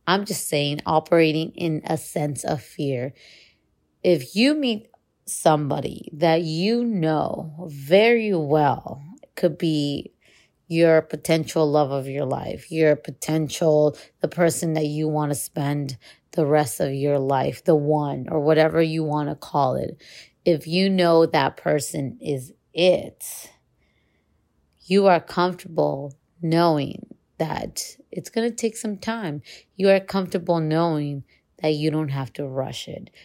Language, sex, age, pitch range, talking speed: English, female, 30-49, 150-190 Hz, 145 wpm